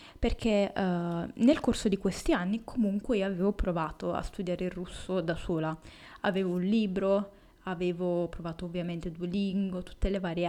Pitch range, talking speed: 185-225 Hz, 155 wpm